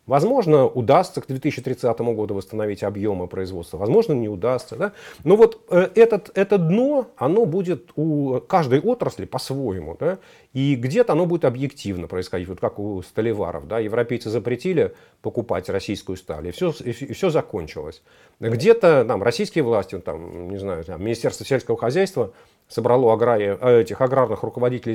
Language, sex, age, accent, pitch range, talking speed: Russian, male, 40-59, native, 120-180 Hz, 145 wpm